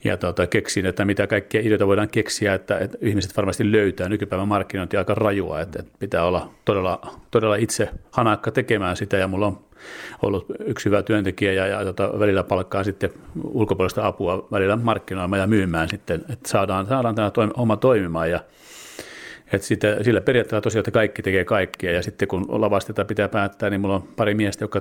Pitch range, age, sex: 95-105 Hz, 40-59, male